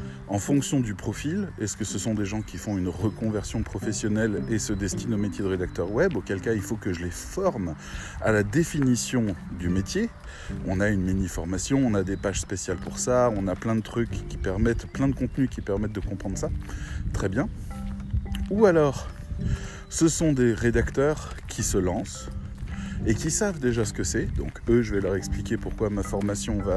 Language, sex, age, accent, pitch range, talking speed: French, male, 20-39, French, 90-115 Hz, 205 wpm